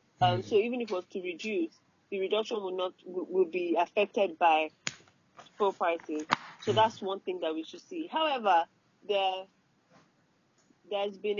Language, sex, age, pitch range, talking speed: English, female, 30-49, 175-225 Hz, 170 wpm